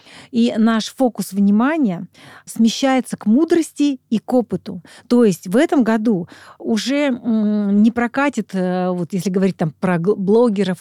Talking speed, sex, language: 135 wpm, female, Russian